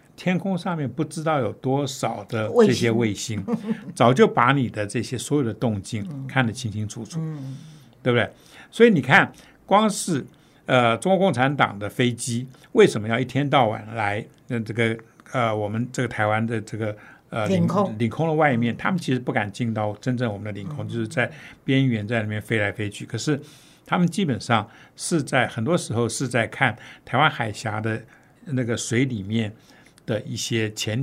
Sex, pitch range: male, 115-160 Hz